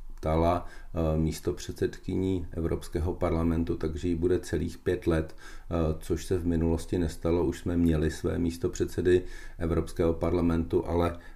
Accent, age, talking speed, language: native, 40-59, 125 wpm, Czech